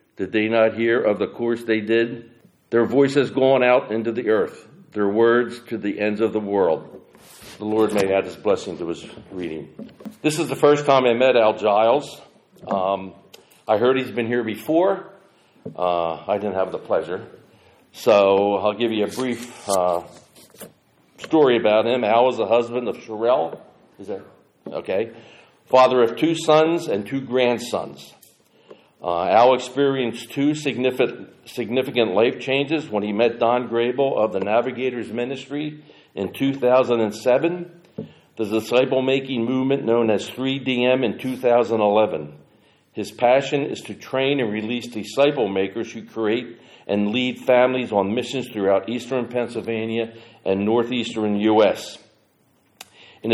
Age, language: 50-69, English